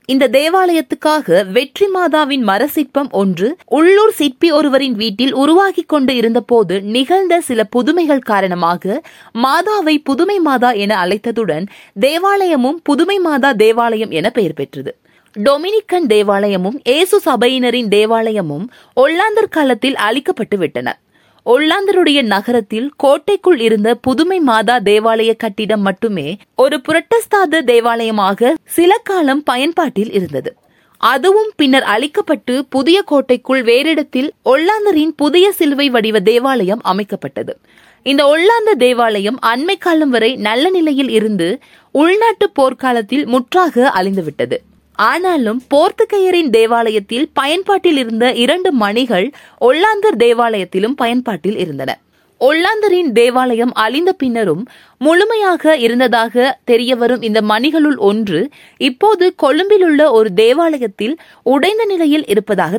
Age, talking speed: 20-39, 105 wpm